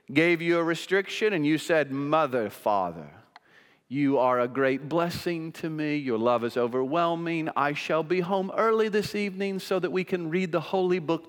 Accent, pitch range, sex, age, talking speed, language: American, 160-270 Hz, male, 40-59, 185 wpm, English